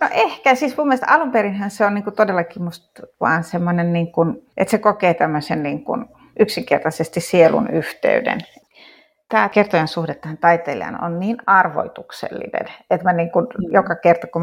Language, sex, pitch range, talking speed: Finnish, female, 175-250 Hz, 150 wpm